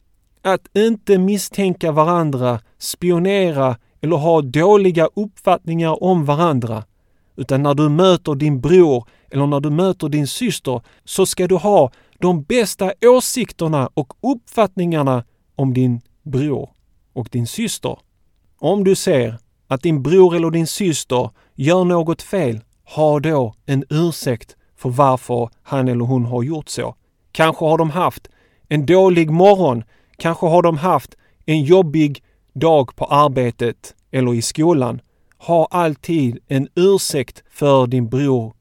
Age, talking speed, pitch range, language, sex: 30-49, 135 wpm, 125-175 Hz, Swedish, male